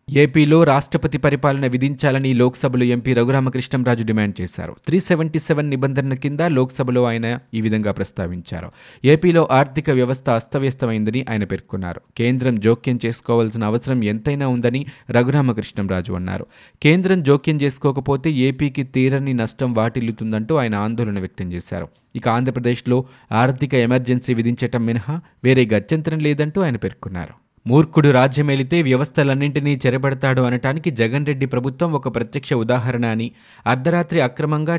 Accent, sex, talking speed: native, male, 120 wpm